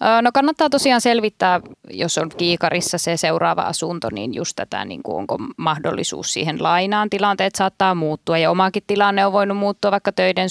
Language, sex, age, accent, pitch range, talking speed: Finnish, female, 20-39, native, 185-250 Hz, 170 wpm